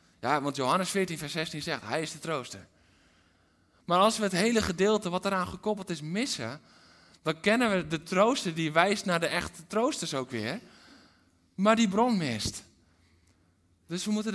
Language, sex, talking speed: Dutch, male, 175 wpm